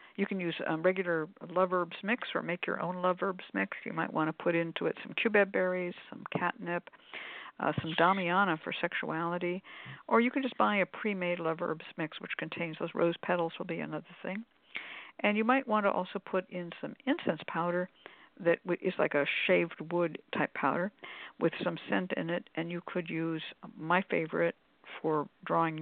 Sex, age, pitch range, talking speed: female, 60-79, 165-210 Hz, 195 wpm